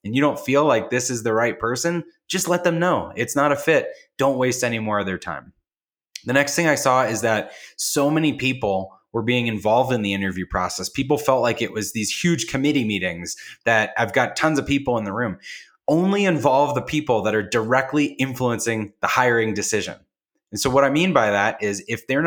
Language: English